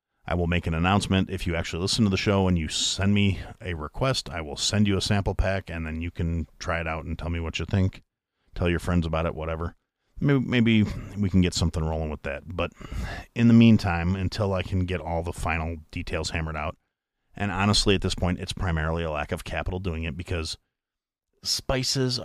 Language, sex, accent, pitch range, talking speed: English, male, American, 85-100 Hz, 220 wpm